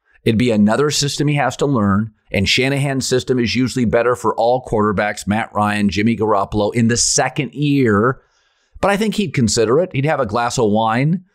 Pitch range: 100-135 Hz